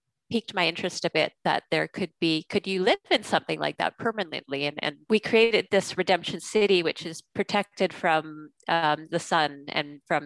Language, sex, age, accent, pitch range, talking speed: English, female, 30-49, American, 150-195 Hz, 195 wpm